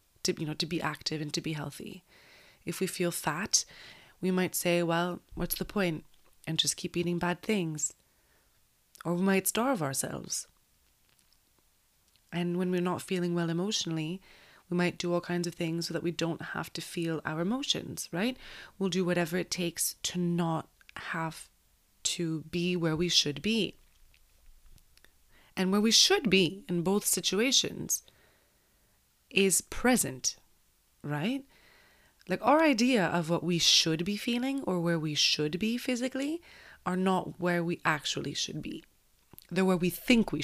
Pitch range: 160-190 Hz